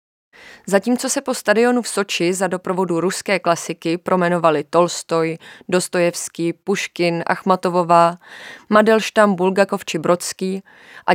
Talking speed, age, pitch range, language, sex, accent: 110 wpm, 20-39, 170-200 Hz, Czech, female, native